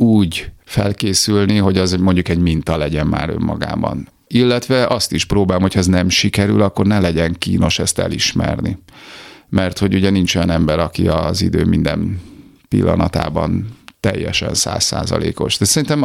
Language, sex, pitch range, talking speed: Hungarian, male, 85-95 Hz, 145 wpm